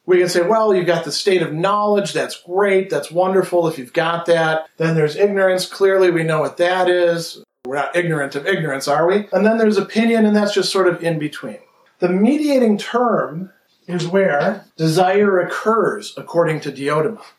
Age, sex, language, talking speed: 40-59, male, English, 190 wpm